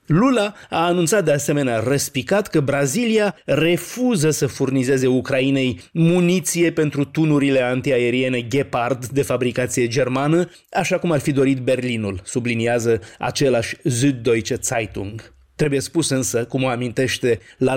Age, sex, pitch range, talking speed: 30-49, male, 130-180 Hz, 125 wpm